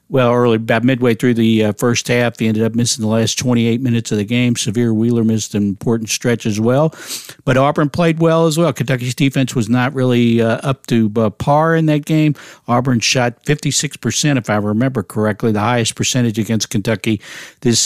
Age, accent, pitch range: 60-79, American, 115-135 Hz